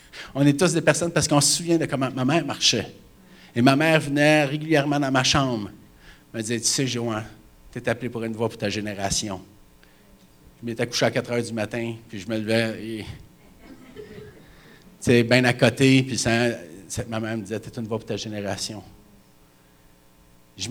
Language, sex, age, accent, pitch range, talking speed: French, male, 50-69, Canadian, 105-135 Hz, 190 wpm